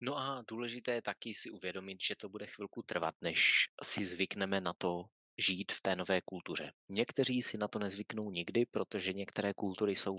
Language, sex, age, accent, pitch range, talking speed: Czech, male, 20-39, native, 95-105 Hz, 190 wpm